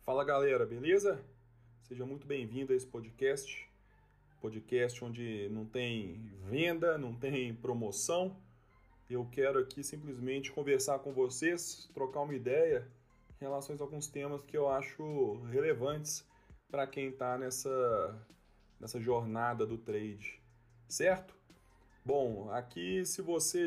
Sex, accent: male, Brazilian